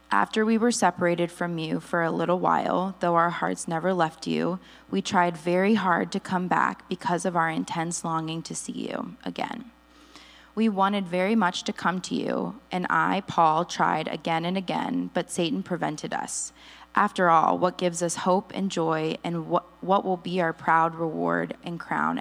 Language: English